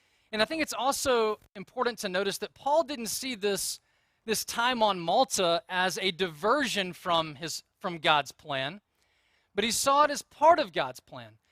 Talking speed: 175 wpm